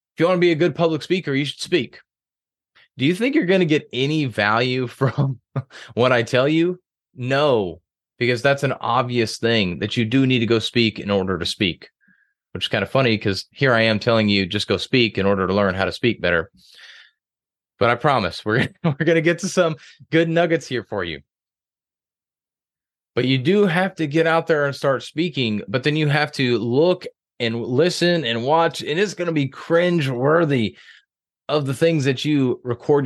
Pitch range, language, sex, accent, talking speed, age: 110-155 Hz, English, male, American, 205 wpm, 30-49